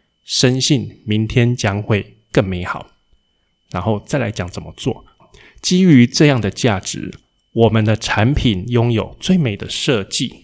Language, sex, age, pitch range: Chinese, male, 20-39, 105-135 Hz